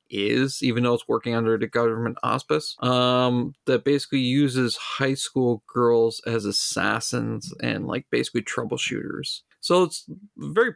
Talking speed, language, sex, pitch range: 140 wpm, English, male, 115-145 Hz